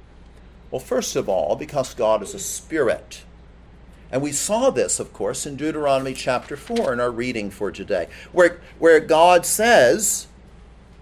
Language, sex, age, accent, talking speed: English, male, 50-69, American, 150 wpm